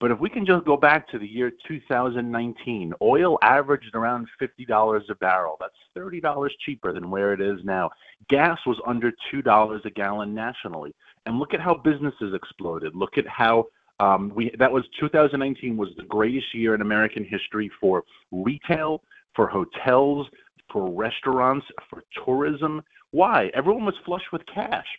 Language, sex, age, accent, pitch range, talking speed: English, male, 40-59, American, 115-155 Hz, 175 wpm